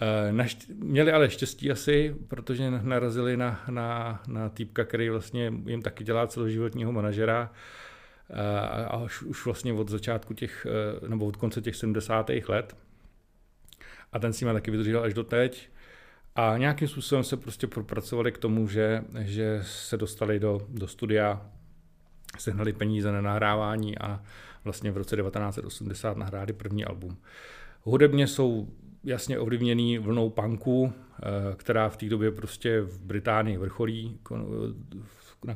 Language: Czech